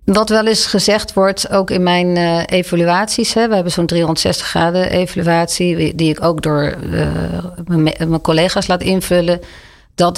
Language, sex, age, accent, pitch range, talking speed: Dutch, female, 40-59, Dutch, 155-180 Hz, 140 wpm